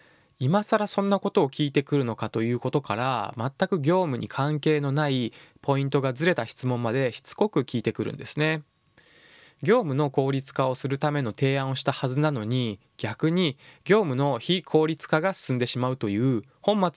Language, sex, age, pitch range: Japanese, male, 20-39, 125-160 Hz